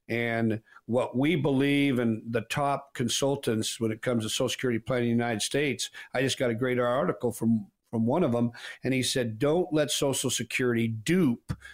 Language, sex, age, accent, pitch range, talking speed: English, male, 50-69, American, 115-140 Hz, 195 wpm